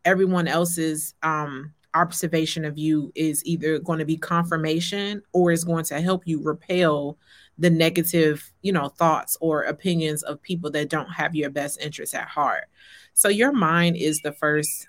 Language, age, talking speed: English, 30-49, 170 wpm